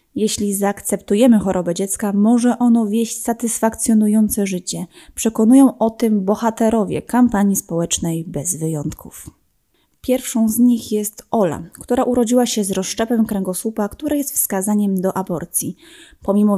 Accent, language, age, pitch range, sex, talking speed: native, Polish, 20-39, 200-230 Hz, female, 125 wpm